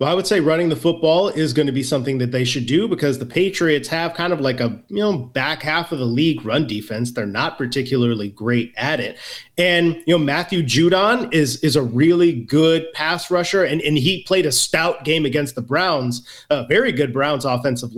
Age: 30-49